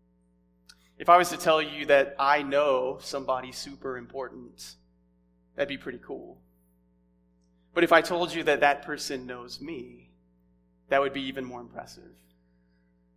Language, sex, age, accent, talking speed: English, male, 30-49, American, 145 wpm